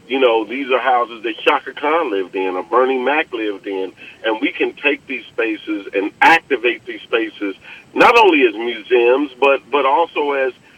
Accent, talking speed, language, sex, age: American, 185 wpm, English, male, 40-59